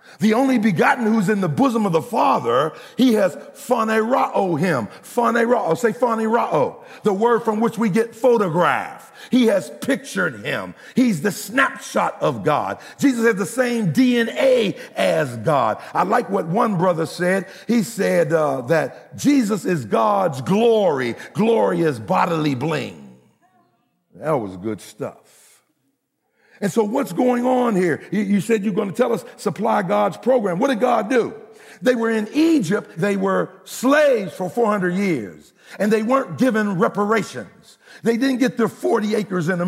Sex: male